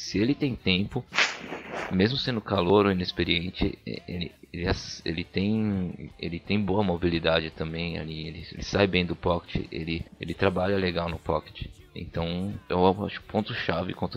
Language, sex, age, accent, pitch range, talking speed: Portuguese, male, 20-39, Brazilian, 85-100 Hz, 150 wpm